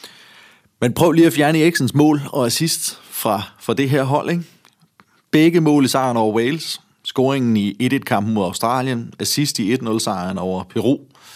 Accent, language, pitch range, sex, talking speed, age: native, Danish, 110-145 Hz, male, 165 wpm, 30-49